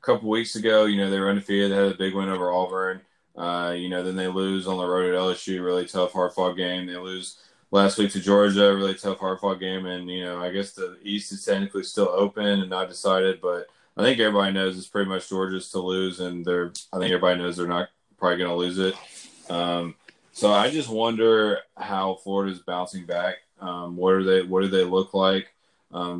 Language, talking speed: English, 225 wpm